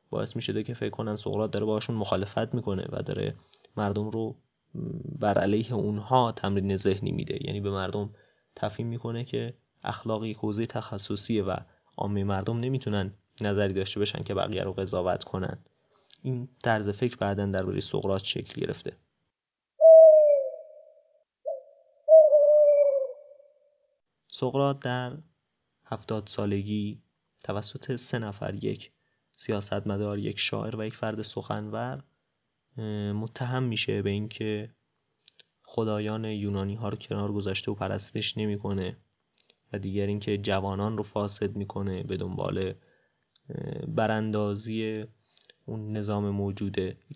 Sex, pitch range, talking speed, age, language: male, 100-130 Hz, 125 wpm, 20-39, Persian